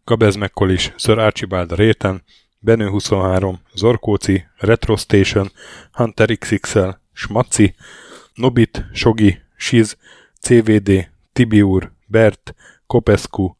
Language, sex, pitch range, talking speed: Hungarian, male, 95-115 Hz, 85 wpm